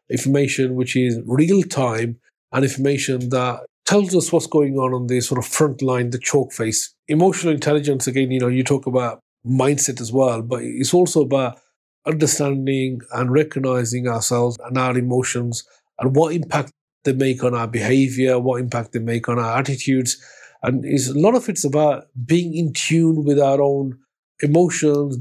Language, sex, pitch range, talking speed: English, male, 125-140 Hz, 170 wpm